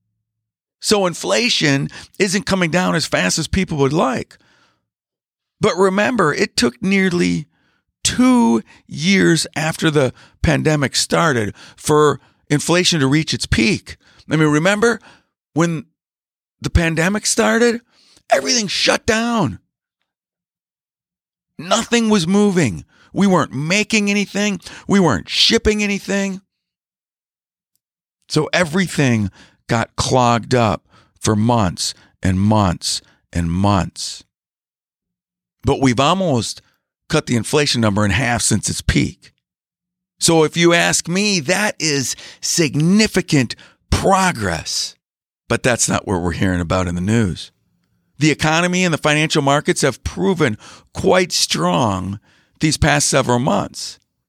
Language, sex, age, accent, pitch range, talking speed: English, male, 50-69, American, 115-190 Hz, 115 wpm